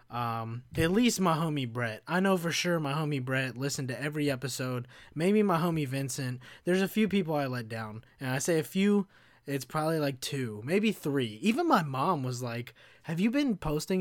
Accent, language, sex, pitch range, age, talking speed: American, English, male, 125-170 Hz, 20-39, 205 wpm